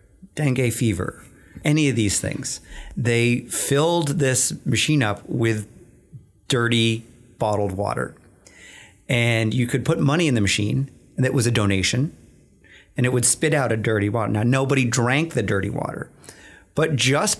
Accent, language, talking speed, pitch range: American, English, 150 wpm, 115-145 Hz